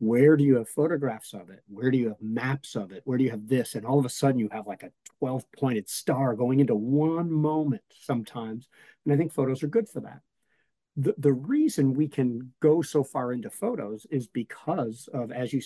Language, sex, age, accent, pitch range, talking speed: English, male, 50-69, American, 115-150 Hz, 225 wpm